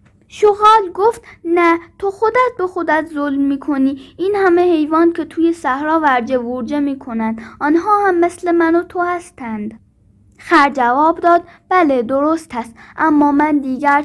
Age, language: 10-29, Persian